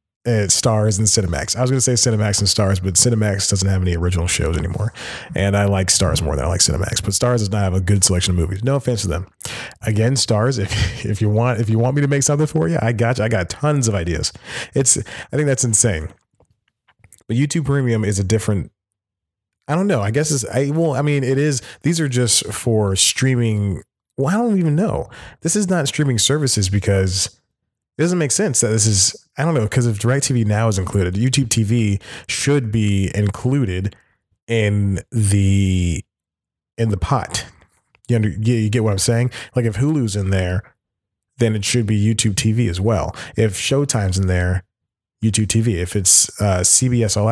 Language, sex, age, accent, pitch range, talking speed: English, male, 30-49, American, 100-125 Hz, 205 wpm